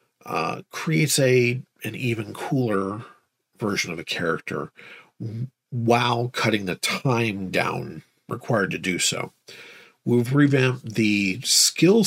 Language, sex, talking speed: English, male, 110 wpm